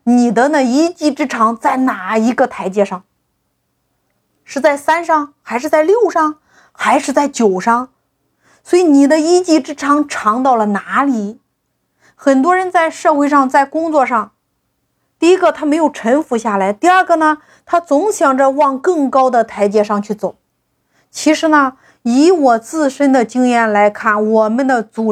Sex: female